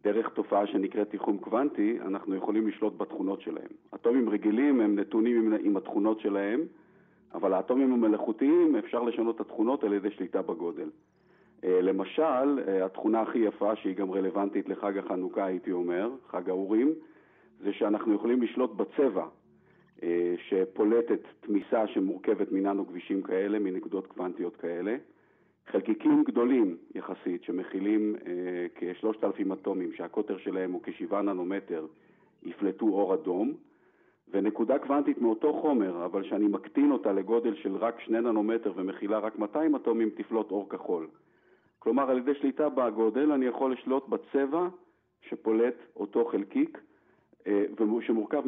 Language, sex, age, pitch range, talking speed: Hebrew, male, 40-59, 100-155 Hz, 130 wpm